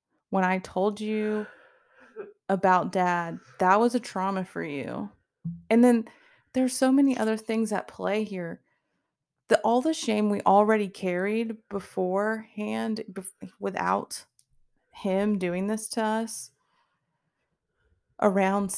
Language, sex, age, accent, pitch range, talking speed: English, female, 20-39, American, 175-220 Hz, 115 wpm